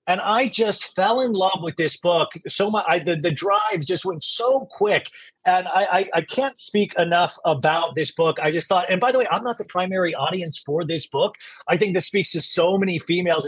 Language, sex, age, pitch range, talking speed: English, male, 30-49, 165-220 Hz, 230 wpm